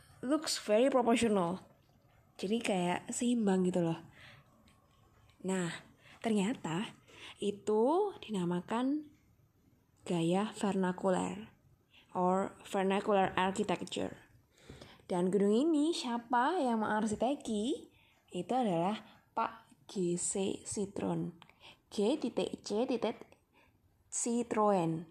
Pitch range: 180-235 Hz